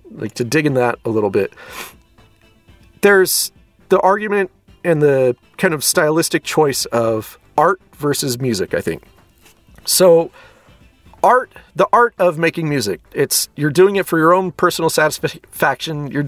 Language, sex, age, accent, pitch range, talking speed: English, male, 40-59, American, 135-190 Hz, 150 wpm